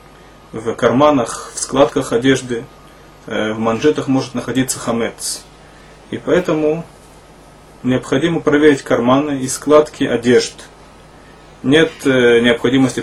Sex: male